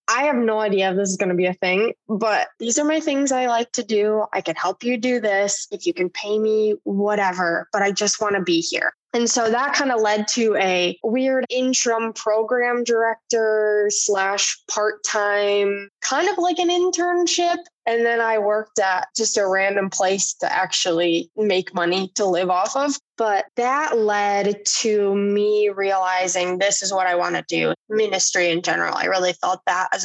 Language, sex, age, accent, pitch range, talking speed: English, female, 10-29, American, 185-225 Hz, 195 wpm